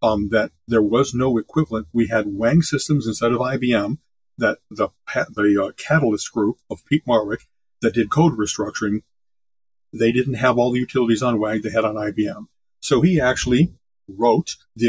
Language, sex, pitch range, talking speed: English, male, 115-150 Hz, 175 wpm